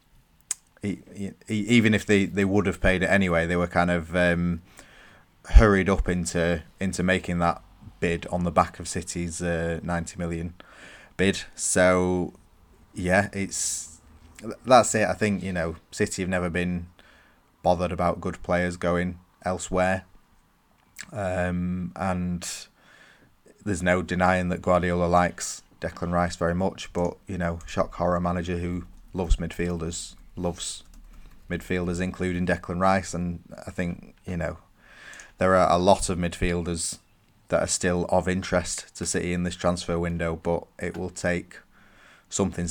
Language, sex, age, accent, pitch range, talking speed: English, male, 20-39, British, 85-95 Hz, 145 wpm